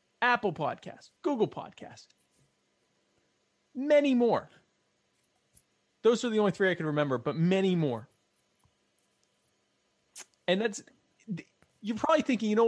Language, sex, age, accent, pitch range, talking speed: English, male, 30-49, American, 155-245 Hz, 115 wpm